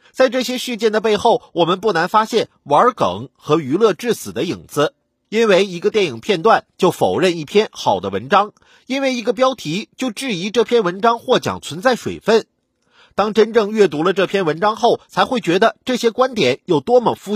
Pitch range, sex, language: 185-240 Hz, male, Chinese